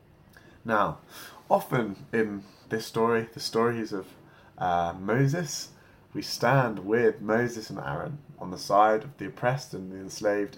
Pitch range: 100-140 Hz